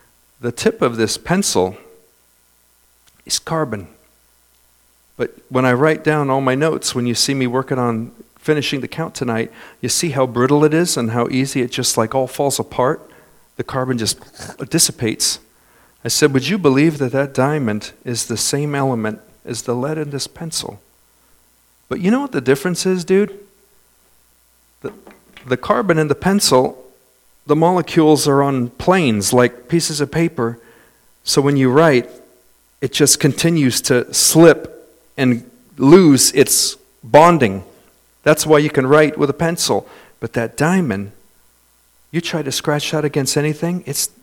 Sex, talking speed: male, 160 wpm